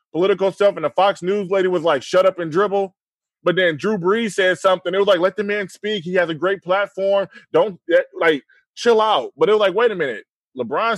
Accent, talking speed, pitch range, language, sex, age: American, 235 wpm, 175-225 Hz, English, male, 20-39